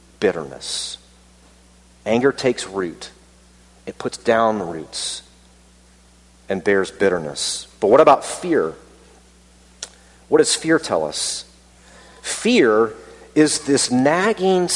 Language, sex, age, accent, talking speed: English, male, 40-59, American, 100 wpm